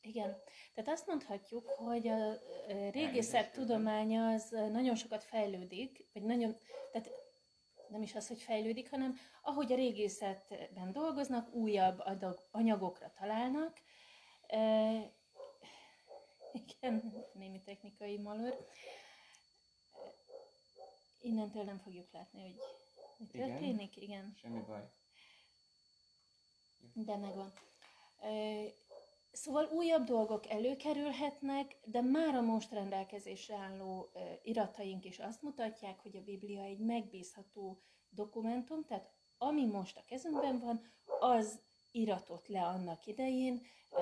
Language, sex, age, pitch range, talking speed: Hungarian, female, 30-49, 200-250 Hz, 100 wpm